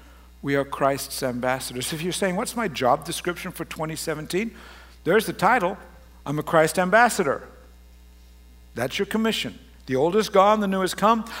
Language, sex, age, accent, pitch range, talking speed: English, male, 60-79, American, 135-200 Hz, 165 wpm